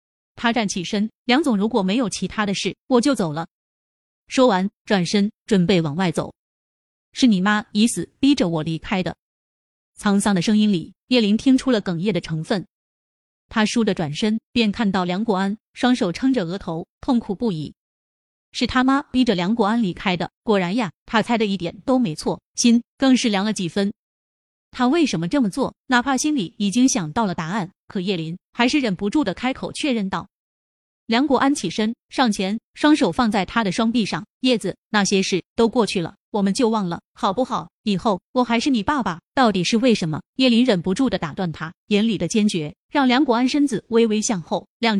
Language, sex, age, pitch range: Chinese, female, 30-49, 190-245 Hz